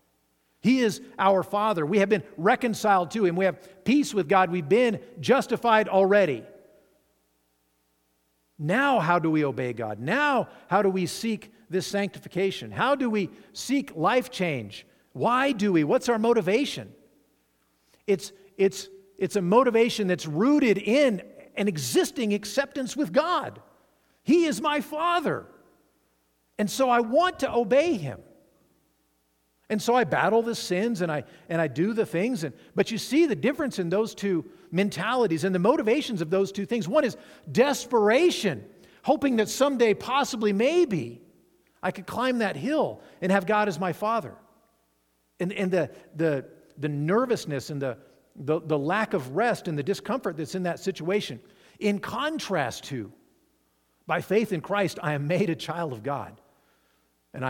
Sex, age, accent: male, 50-69, American